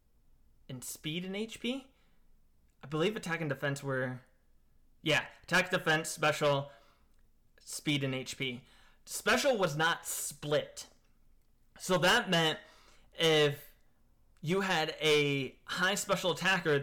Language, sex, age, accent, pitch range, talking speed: English, male, 20-39, American, 135-185 Hz, 110 wpm